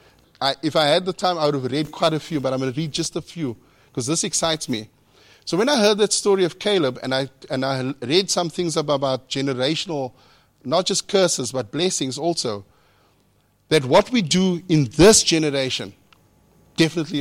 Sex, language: male, English